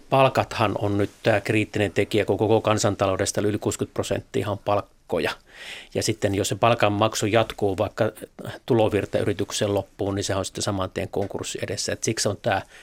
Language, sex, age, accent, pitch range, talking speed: Finnish, male, 30-49, native, 100-110 Hz, 165 wpm